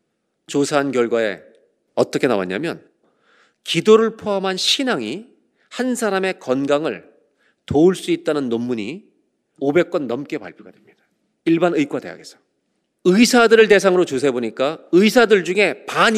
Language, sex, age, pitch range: Korean, male, 40-59, 150-225 Hz